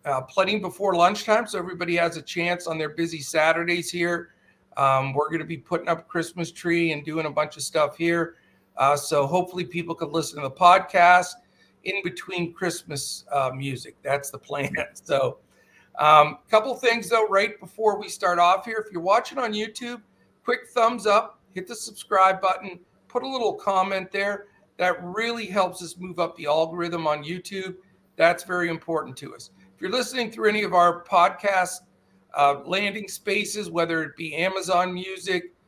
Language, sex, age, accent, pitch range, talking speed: English, male, 50-69, American, 165-205 Hz, 180 wpm